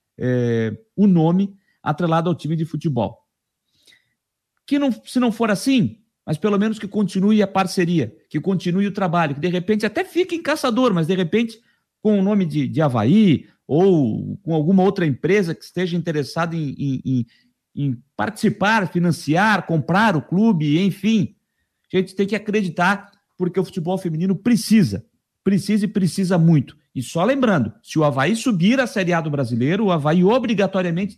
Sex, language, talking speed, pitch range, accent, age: male, Portuguese, 160 wpm, 160-210 Hz, Brazilian, 50-69